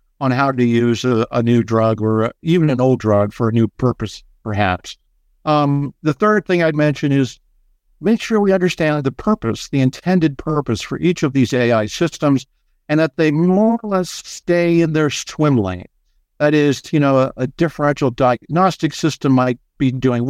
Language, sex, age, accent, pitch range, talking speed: English, male, 60-79, American, 115-150 Hz, 185 wpm